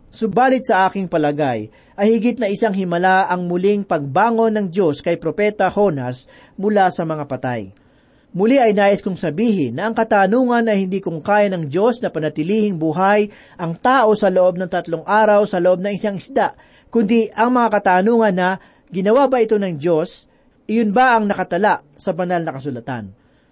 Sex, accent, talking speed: male, native, 175 wpm